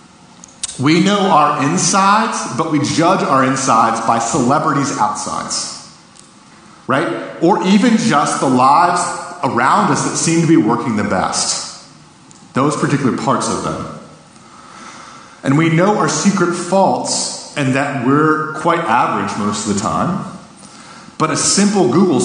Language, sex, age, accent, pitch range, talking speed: English, male, 40-59, American, 120-180 Hz, 140 wpm